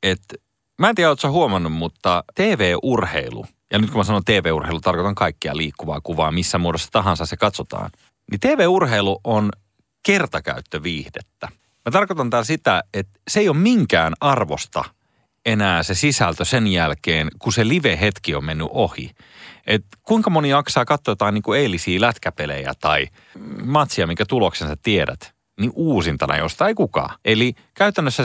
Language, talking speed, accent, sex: Finnish, 150 wpm, native, male